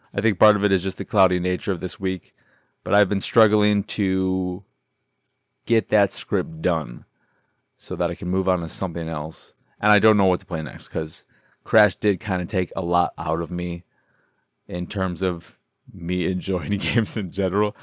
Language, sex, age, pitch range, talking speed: English, male, 30-49, 90-110 Hz, 195 wpm